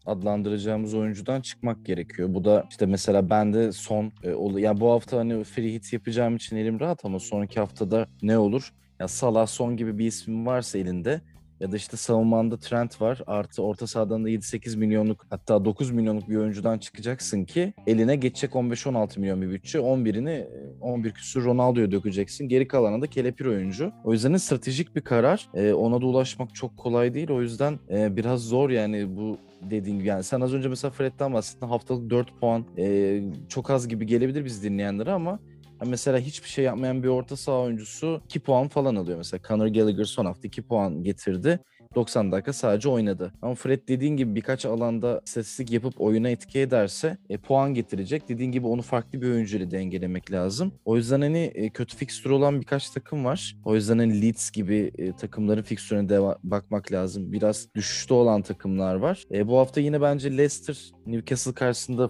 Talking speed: 175 wpm